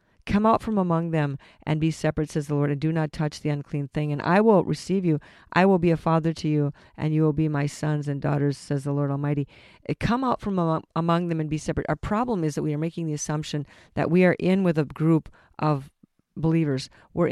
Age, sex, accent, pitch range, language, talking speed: 50-69, female, American, 145-170 Hz, English, 240 wpm